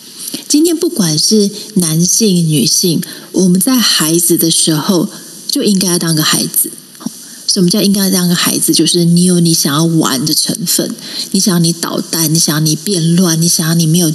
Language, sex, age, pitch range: Chinese, female, 30-49, 165-220 Hz